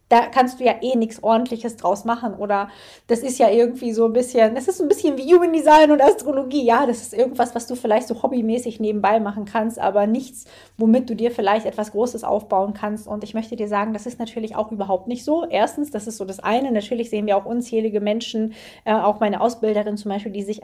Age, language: 20-39, German